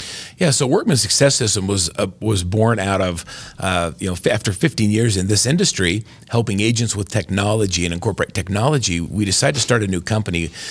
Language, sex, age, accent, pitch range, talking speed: English, male, 40-59, American, 90-110 Hz, 195 wpm